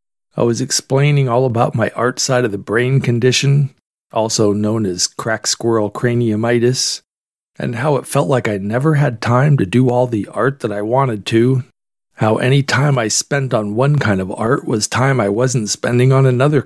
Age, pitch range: 40-59, 110-130 Hz